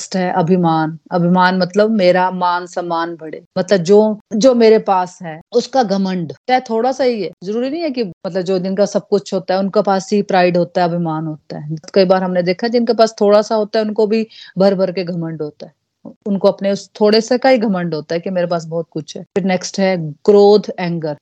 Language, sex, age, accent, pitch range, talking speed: Hindi, female, 30-49, native, 175-210 Hz, 225 wpm